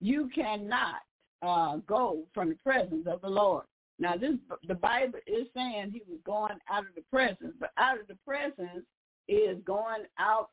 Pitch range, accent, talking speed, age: 180-260 Hz, American, 175 wpm, 60-79